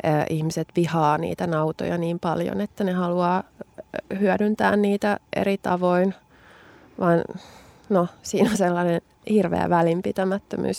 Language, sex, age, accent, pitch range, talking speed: Finnish, female, 20-39, native, 165-190 Hz, 110 wpm